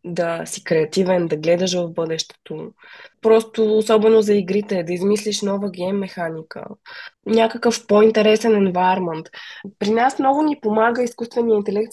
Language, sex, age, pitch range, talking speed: Bulgarian, female, 20-39, 180-225 Hz, 125 wpm